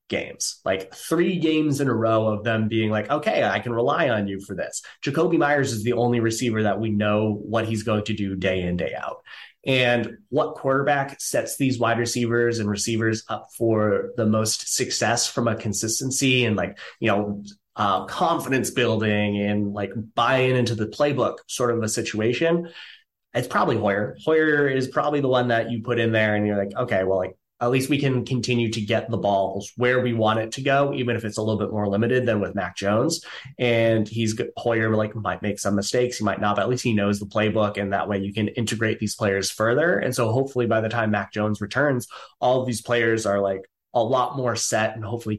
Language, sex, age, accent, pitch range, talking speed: English, male, 30-49, American, 105-125 Hz, 220 wpm